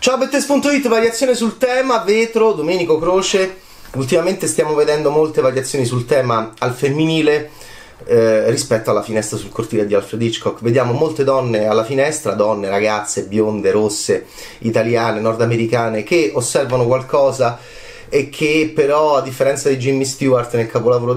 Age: 30-49